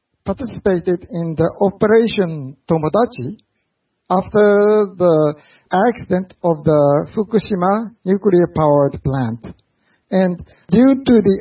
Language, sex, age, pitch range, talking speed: English, male, 60-79, 165-220 Hz, 90 wpm